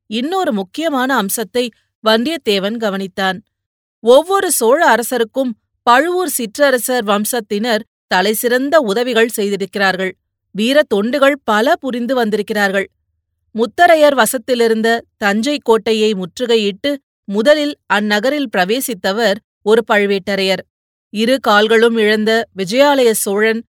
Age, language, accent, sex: 30-49, Tamil, native, female